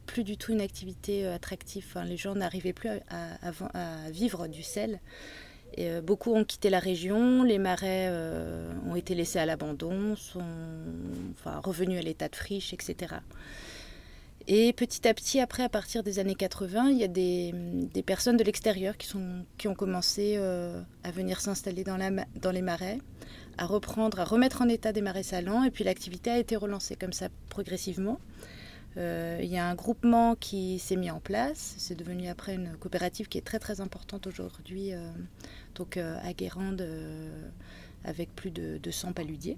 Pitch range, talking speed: 175-210 Hz, 190 wpm